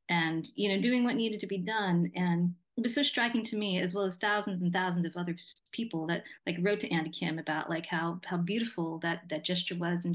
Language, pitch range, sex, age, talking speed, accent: English, 175-210 Hz, female, 30-49, 240 wpm, American